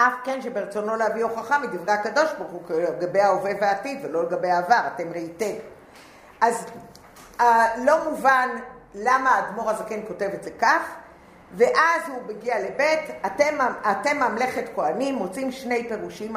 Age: 50-69